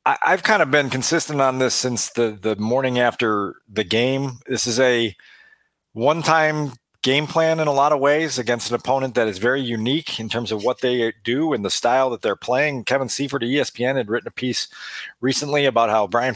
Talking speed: 205 wpm